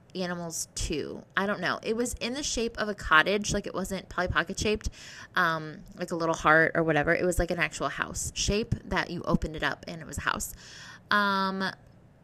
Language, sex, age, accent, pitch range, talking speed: English, female, 20-39, American, 185-230 Hz, 215 wpm